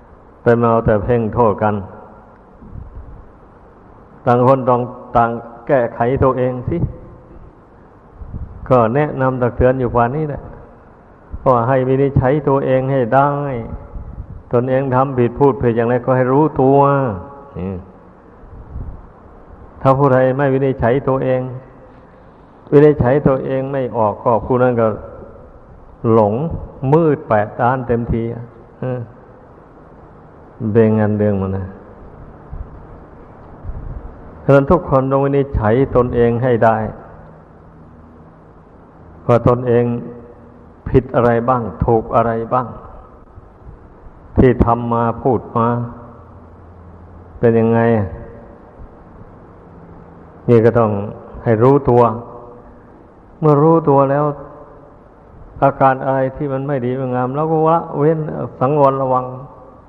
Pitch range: 105-130 Hz